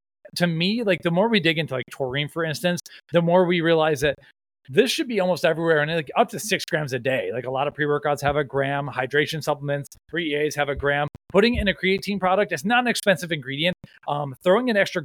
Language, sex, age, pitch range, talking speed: English, male, 30-49, 145-180 Hz, 240 wpm